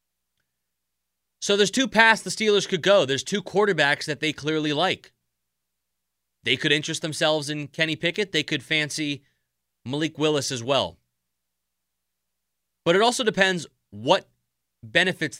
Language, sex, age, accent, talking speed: English, male, 30-49, American, 135 wpm